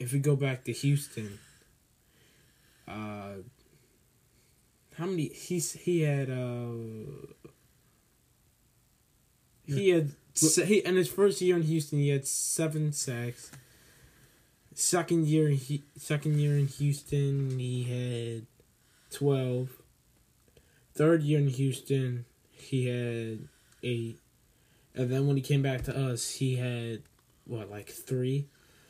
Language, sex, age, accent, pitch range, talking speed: English, male, 10-29, American, 125-145 Hz, 115 wpm